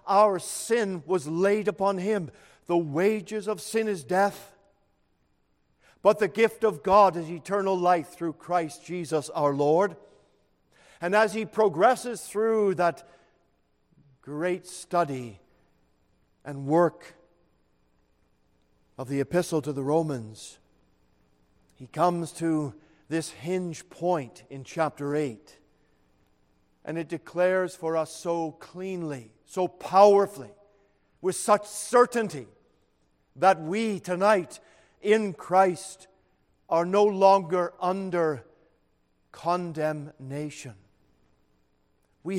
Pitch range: 145-195 Hz